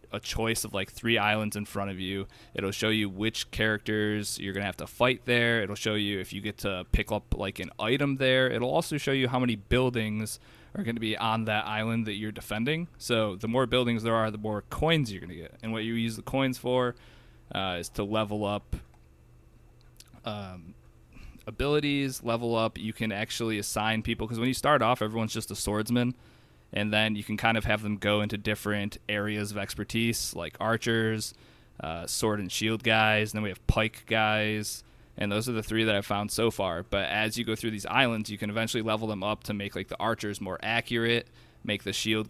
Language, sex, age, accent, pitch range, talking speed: English, male, 20-39, American, 105-115 Hz, 215 wpm